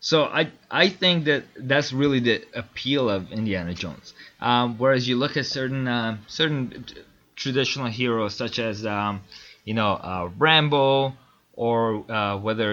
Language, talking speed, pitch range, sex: English, 150 wpm, 115-150 Hz, male